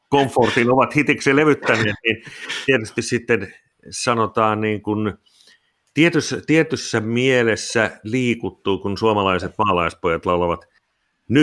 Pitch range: 100-125 Hz